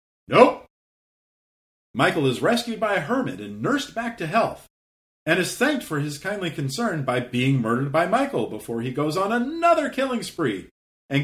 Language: English